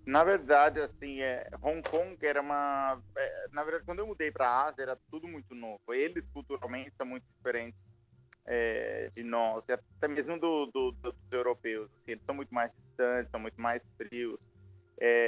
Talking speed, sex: 190 wpm, male